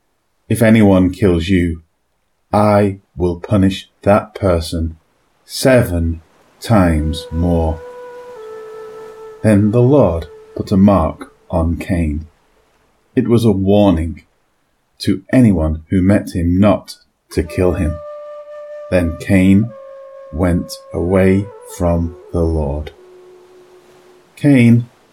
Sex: male